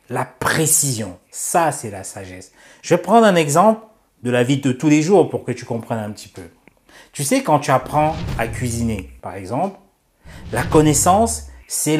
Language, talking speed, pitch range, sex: French, 185 wpm, 115-140 Hz, male